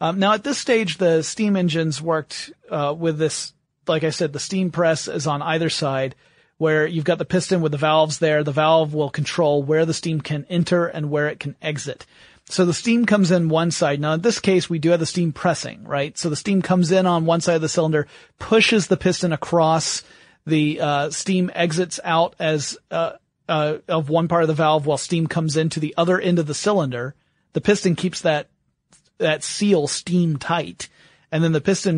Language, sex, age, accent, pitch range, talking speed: English, male, 30-49, American, 150-175 Hz, 215 wpm